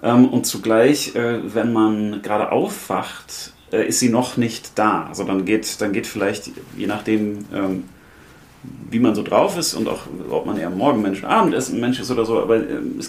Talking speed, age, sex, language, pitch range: 180 wpm, 30-49, male, German, 110-140 Hz